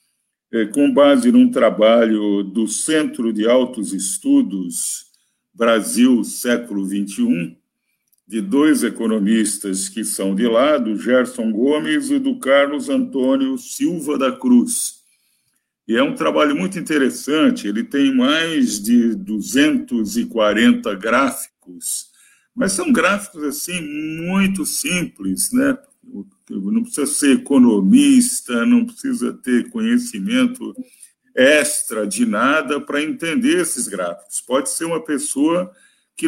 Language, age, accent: Portuguese, 50-69, Brazilian